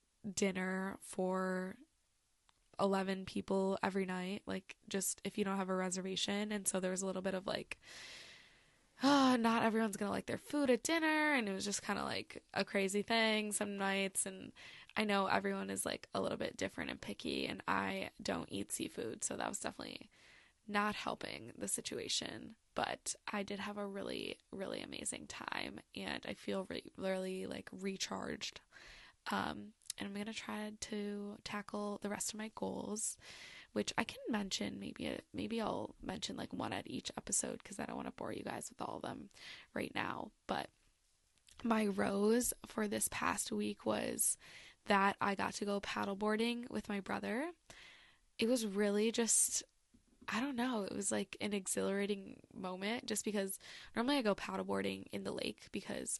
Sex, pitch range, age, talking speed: female, 190-215 Hz, 10-29, 175 wpm